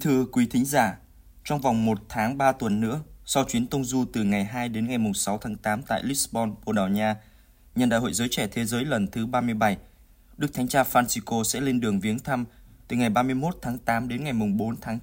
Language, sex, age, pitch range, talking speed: Vietnamese, male, 20-39, 110-130 Hz, 225 wpm